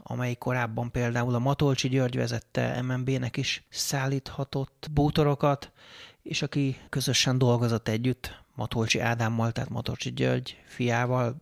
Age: 30-49